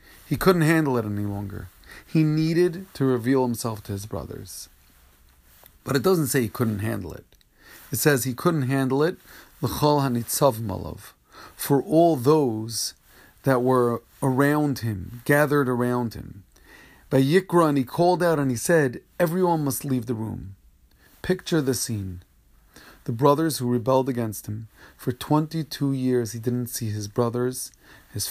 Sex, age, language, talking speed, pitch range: male, 40-59, English, 155 wpm, 120-155 Hz